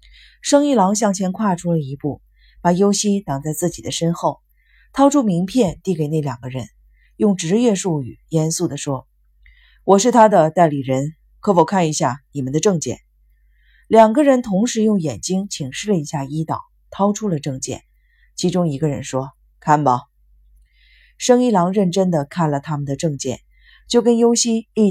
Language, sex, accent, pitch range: Chinese, female, native, 140-200 Hz